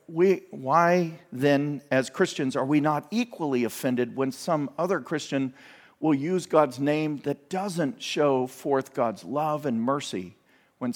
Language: English